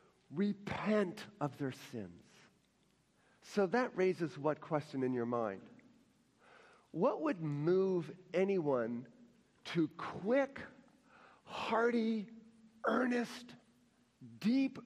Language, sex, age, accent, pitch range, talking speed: English, male, 50-69, American, 165-245 Hz, 85 wpm